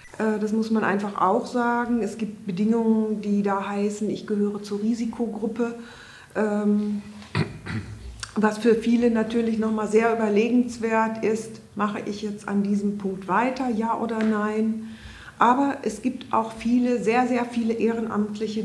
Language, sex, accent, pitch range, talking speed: German, female, German, 200-225 Hz, 140 wpm